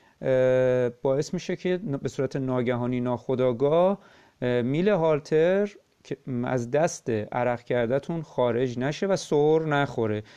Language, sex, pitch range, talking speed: Persian, male, 110-160 Hz, 110 wpm